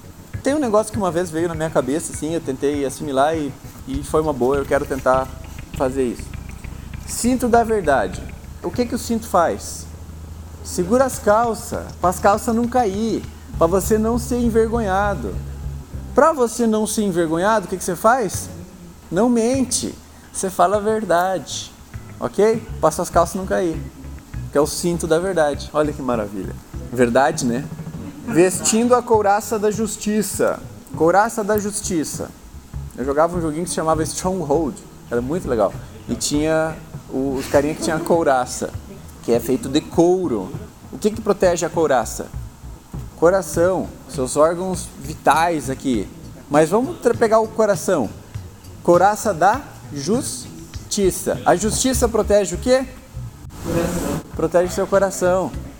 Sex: male